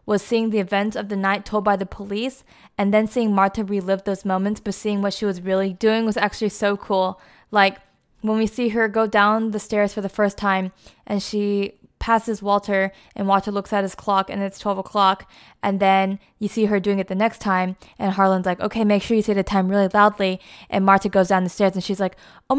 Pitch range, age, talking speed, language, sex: 195-230 Hz, 10-29, 235 wpm, English, female